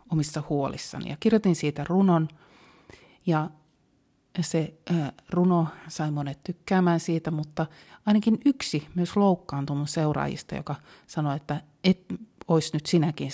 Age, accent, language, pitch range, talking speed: 30-49, native, Finnish, 150-185 Hz, 120 wpm